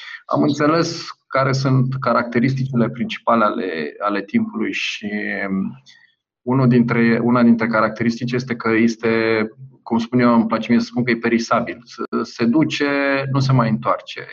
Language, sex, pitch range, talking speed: Romanian, male, 115-140 Hz, 145 wpm